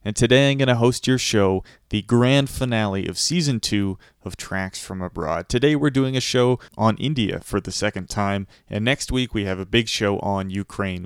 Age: 30-49